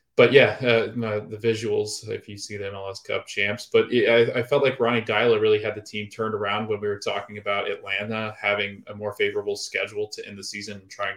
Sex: male